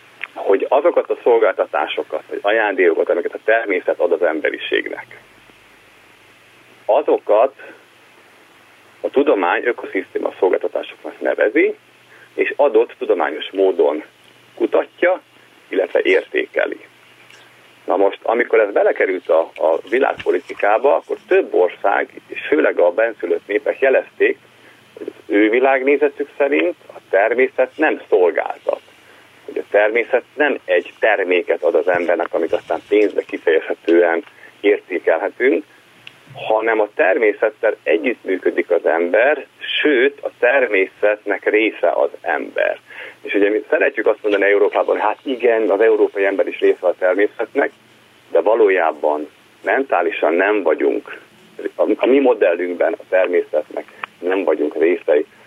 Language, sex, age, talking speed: Hungarian, male, 40-59, 115 wpm